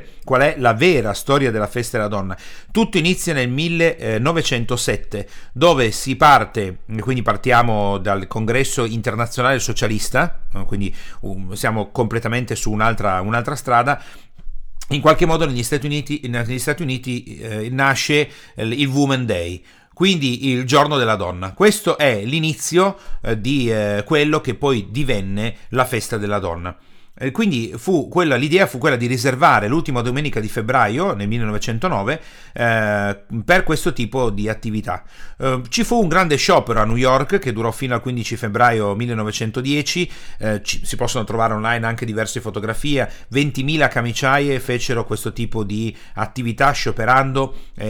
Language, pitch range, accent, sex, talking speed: Italian, 110-140 Hz, native, male, 135 wpm